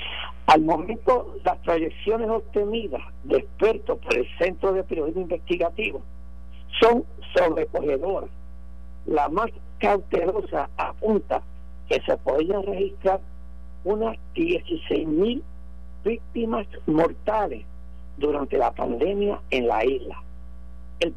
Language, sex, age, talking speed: Spanish, male, 60-79, 95 wpm